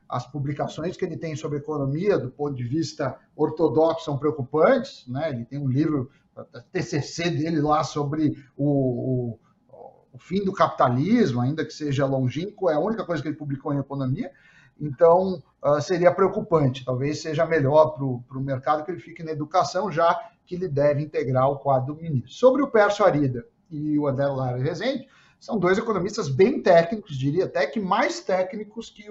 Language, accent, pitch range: Portuguese, Brazilian, 135-190 Hz